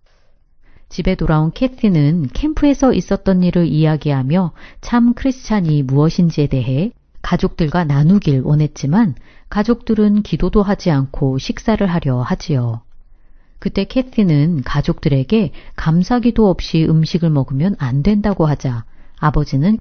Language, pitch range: Korean, 140-200 Hz